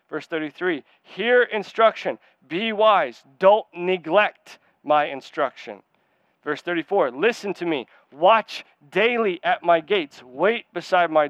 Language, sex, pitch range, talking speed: English, male, 155-200 Hz, 120 wpm